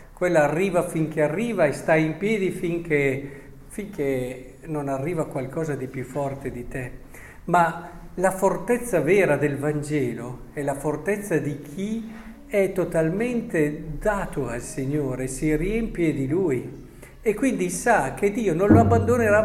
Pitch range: 145-205 Hz